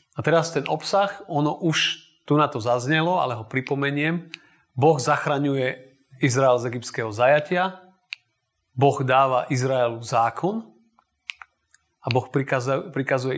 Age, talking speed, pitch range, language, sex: 30-49, 115 wpm, 115-145 Hz, Slovak, male